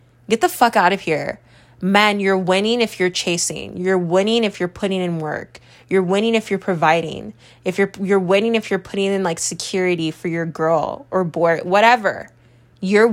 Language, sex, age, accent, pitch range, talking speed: English, female, 20-39, American, 165-210 Hz, 185 wpm